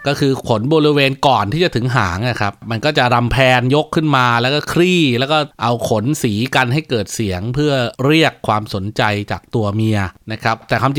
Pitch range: 115-150 Hz